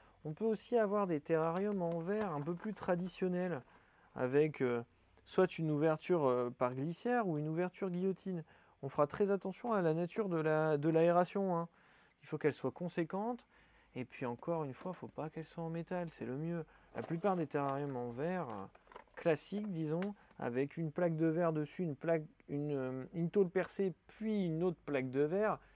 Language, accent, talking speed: French, French, 185 wpm